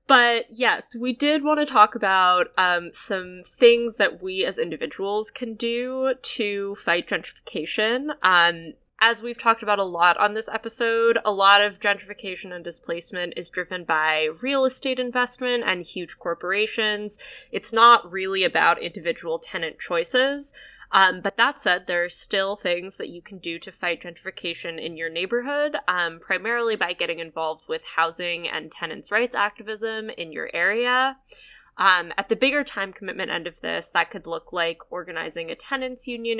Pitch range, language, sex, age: 170-235 Hz, English, female, 10-29